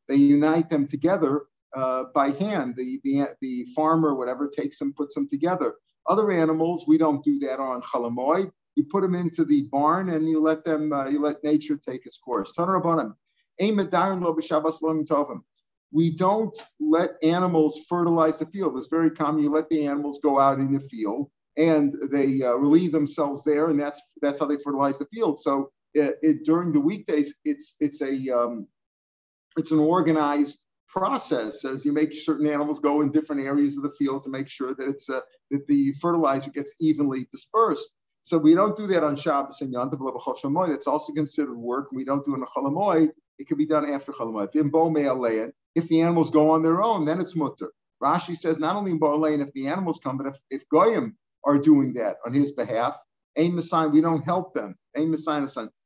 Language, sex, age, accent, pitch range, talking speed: English, male, 50-69, American, 140-160 Hz, 190 wpm